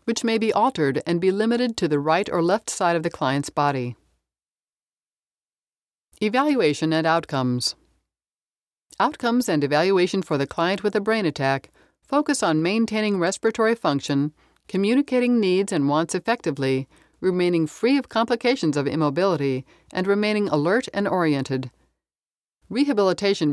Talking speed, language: 135 wpm, English